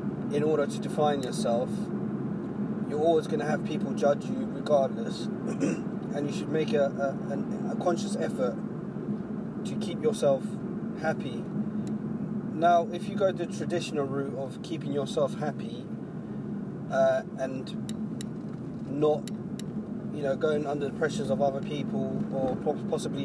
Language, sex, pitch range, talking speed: English, male, 135-210 Hz, 135 wpm